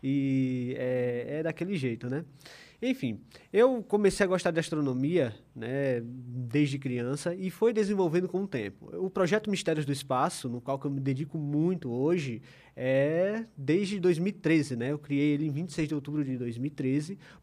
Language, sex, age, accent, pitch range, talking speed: Portuguese, male, 20-39, Brazilian, 135-180 Hz, 160 wpm